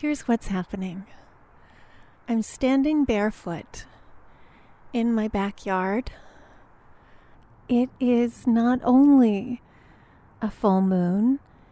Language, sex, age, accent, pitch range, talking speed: English, female, 30-49, American, 200-265 Hz, 80 wpm